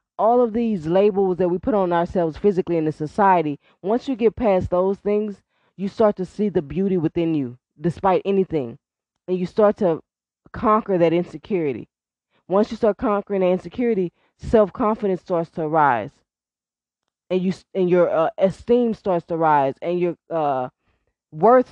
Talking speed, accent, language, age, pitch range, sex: 165 wpm, American, English, 20-39, 175-215 Hz, female